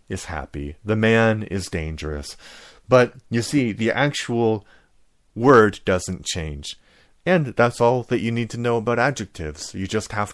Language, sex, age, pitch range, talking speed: English, male, 30-49, 95-125 Hz, 155 wpm